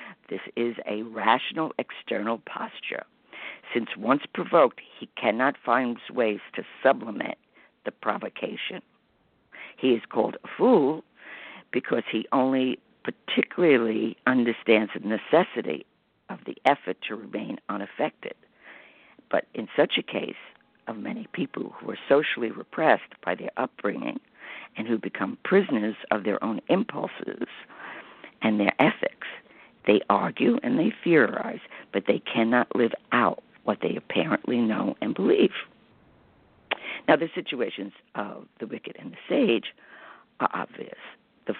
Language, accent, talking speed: English, American, 130 wpm